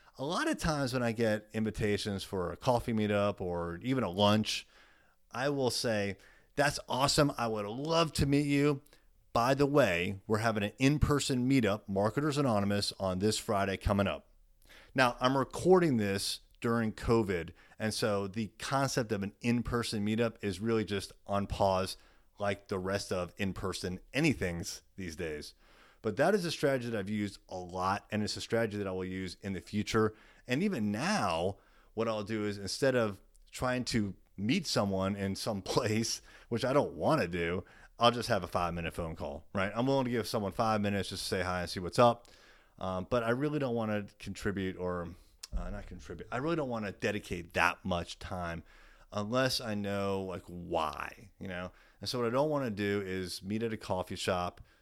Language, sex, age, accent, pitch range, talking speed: English, male, 30-49, American, 95-120 Hz, 195 wpm